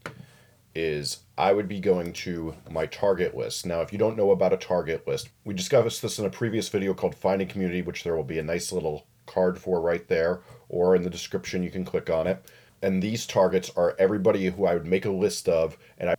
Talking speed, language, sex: 225 wpm, English, male